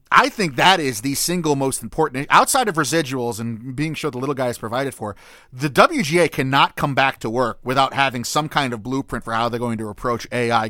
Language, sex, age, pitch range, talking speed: English, male, 30-49, 120-155 Hz, 225 wpm